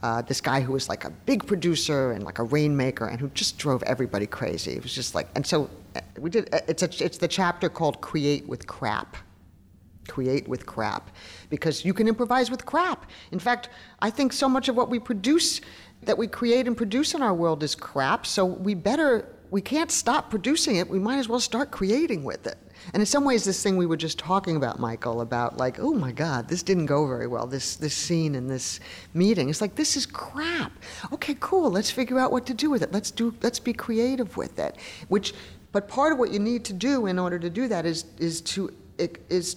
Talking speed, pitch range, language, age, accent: 225 wpm, 145-235 Hz, English, 50-69, American